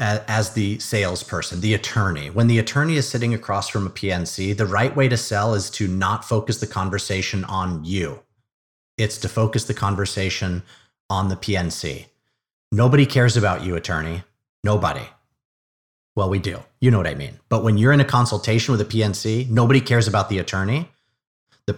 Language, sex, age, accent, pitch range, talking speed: English, male, 30-49, American, 100-135 Hz, 175 wpm